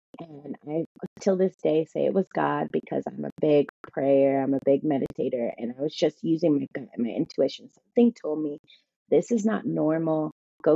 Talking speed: 200 wpm